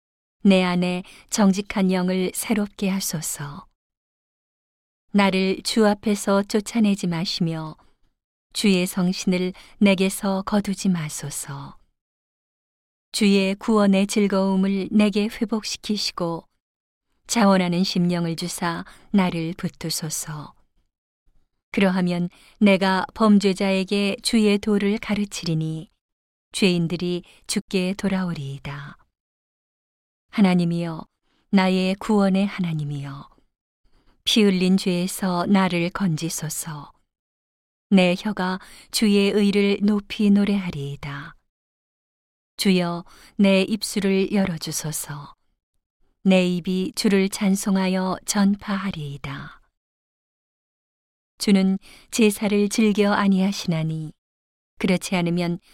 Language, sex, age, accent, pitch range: Korean, female, 40-59, native, 170-200 Hz